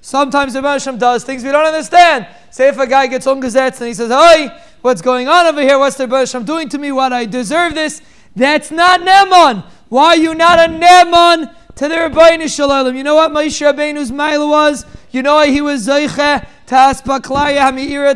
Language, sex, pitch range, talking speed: English, male, 260-295 Hz, 200 wpm